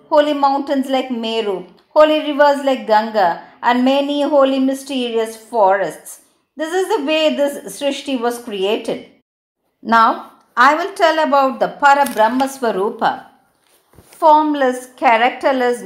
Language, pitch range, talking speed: Tamil, 220-290 Hz, 115 wpm